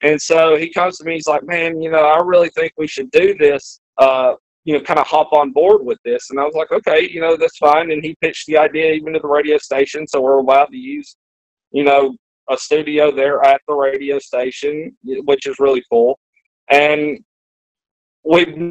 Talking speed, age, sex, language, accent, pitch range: 215 wpm, 30-49, male, English, American, 145-195 Hz